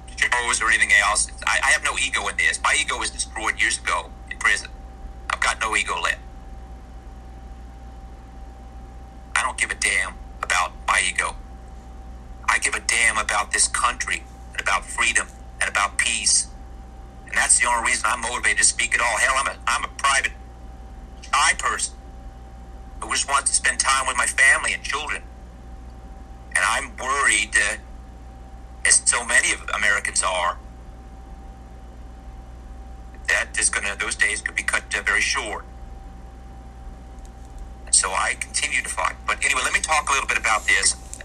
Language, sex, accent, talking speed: German, male, American, 160 wpm